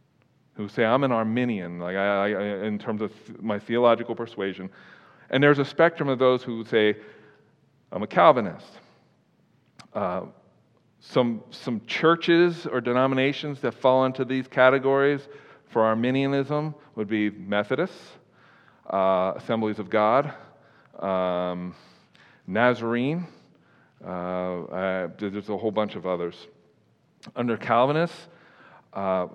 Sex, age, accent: male, 40-59, American